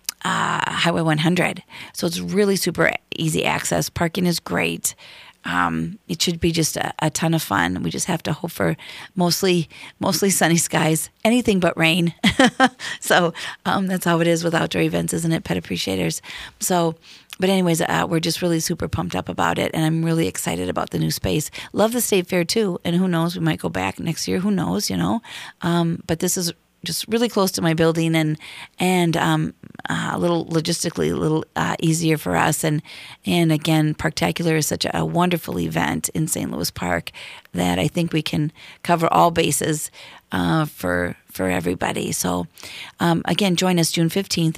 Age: 40-59